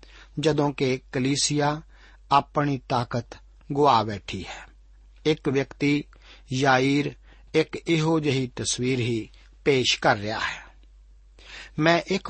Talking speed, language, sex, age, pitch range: 105 wpm, Punjabi, male, 60-79, 125-155 Hz